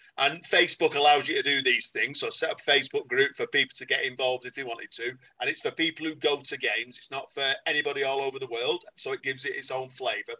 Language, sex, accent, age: English, male, British, 40-59